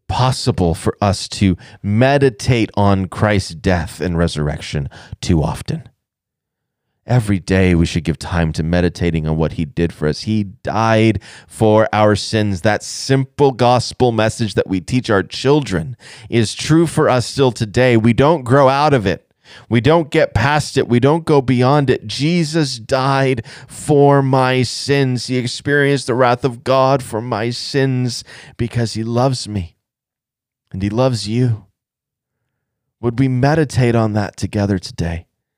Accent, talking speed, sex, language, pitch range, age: American, 155 wpm, male, English, 115-180 Hz, 30-49